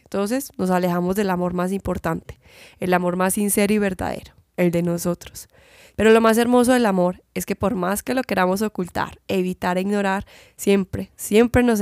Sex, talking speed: female, 185 wpm